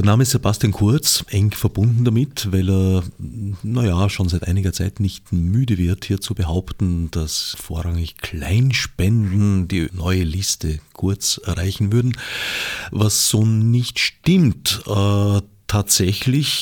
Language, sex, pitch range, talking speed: German, male, 90-115 Hz, 135 wpm